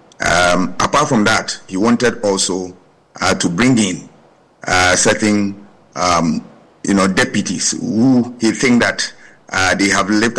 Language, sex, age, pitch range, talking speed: English, male, 50-69, 100-110 Hz, 145 wpm